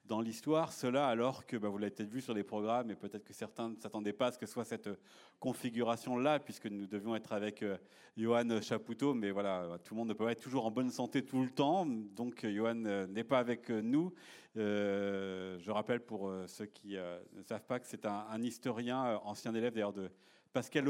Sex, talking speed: male, 225 wpm